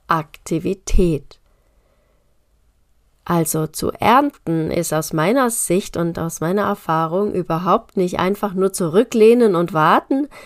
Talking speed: 110 wpm